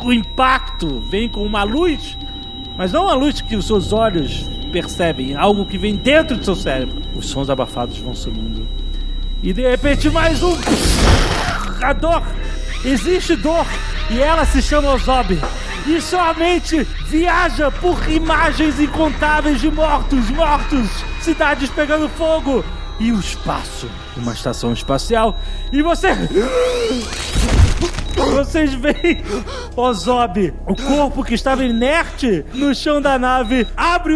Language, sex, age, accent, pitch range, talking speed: Portuguese, male, 40-59, Brazilian, 205-305 Hz, 135 wpm